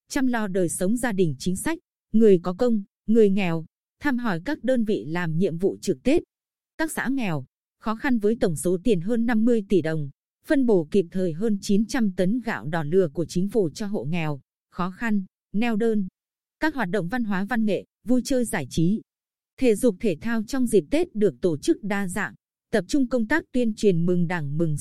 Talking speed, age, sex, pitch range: 215 wpm, 20-39, female, 180-240 Hz